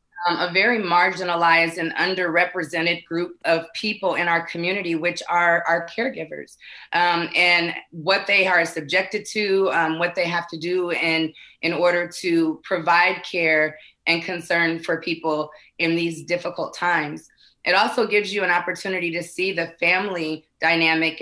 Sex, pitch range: female, 165-185 Hz